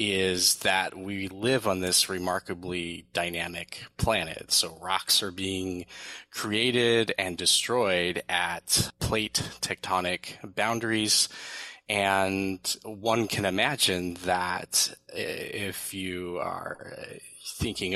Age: 20-39